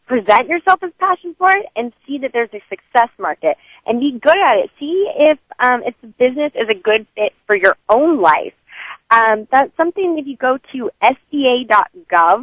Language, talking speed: English, 195 wpm